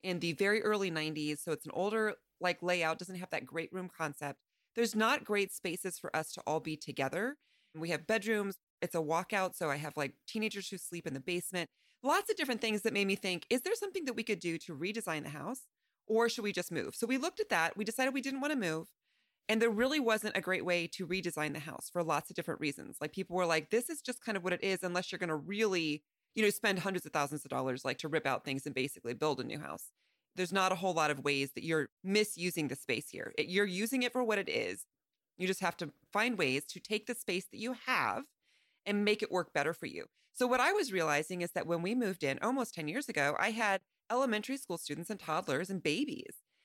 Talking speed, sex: 250 wpm, female